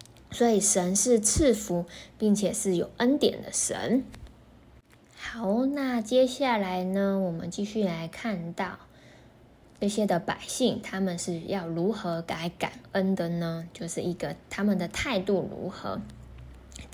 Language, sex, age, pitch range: Chinese, female, 20-39, 175-220 Hz